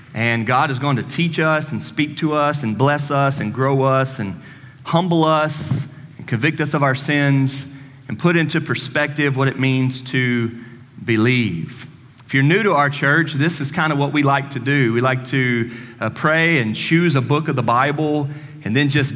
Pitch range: 130-155 Hz